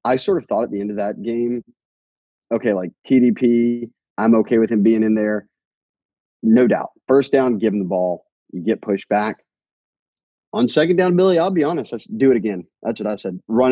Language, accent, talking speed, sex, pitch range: English, American, 210 wpm, male, 95-120 Hz